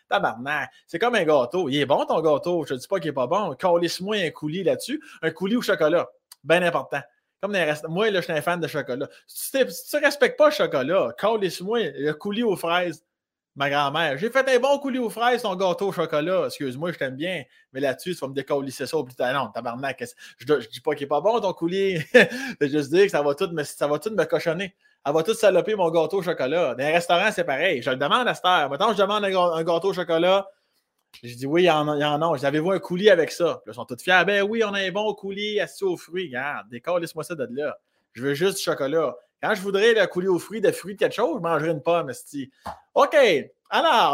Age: 20-39